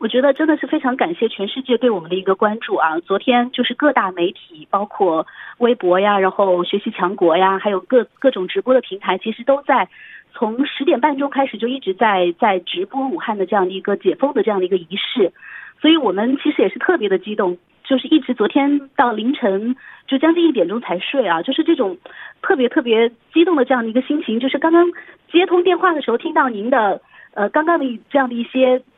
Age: 30-49